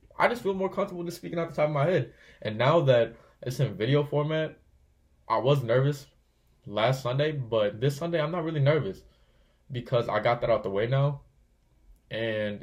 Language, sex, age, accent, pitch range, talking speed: English, male, 20-39, American, 110-140 Hz, 195 wpm